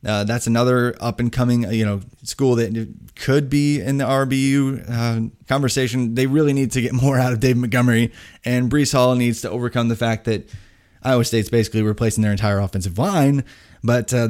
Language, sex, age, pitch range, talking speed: English, male, 20-39, 110-130 Hz, 195 wpm